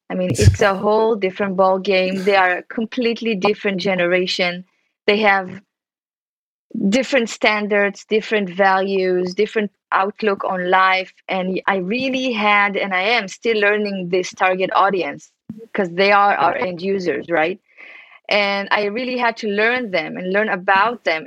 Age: 20-39